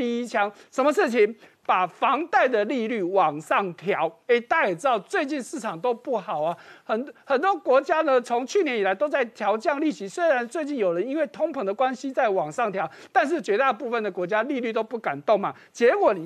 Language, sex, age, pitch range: Chinese, male, 50-69, 205-310 Hz